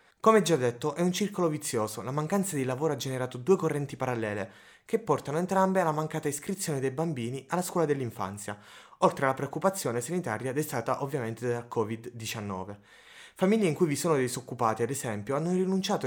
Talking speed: 170 wpm